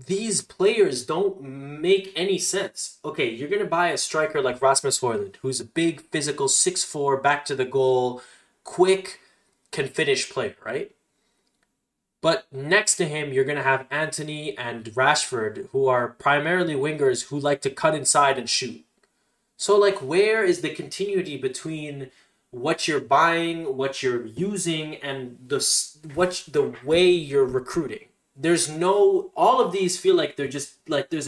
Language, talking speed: English, 160 wpm